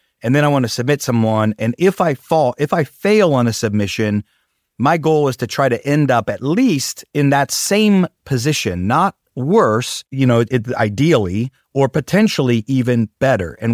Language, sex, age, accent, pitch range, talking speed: English, male, 30-49, American, 110-145 Hz, 185 wpm